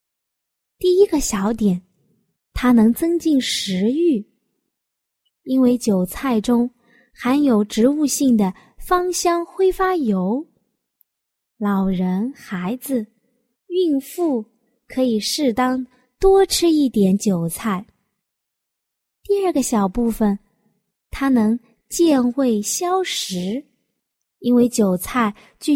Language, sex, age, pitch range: Chinese, female, 20-39, 210-310 Hz